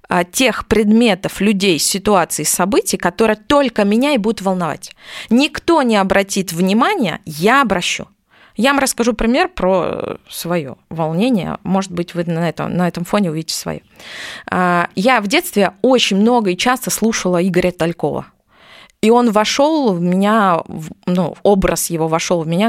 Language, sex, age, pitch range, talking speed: Russian, female, 20-39, 175-225 Hz, 145 wpm